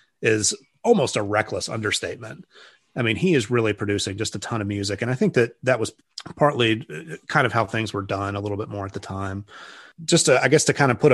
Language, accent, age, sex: English, American, 30-49, male